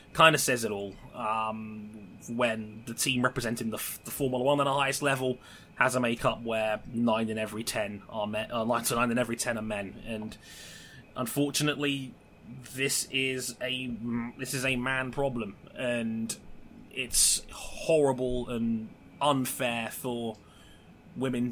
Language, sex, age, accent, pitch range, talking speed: English, male, 20-39, British, 115-140 Hz, 150 wpm